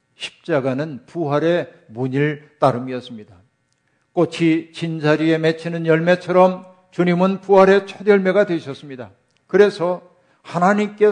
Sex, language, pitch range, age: male, Korean, 135-185 Hz, 50-69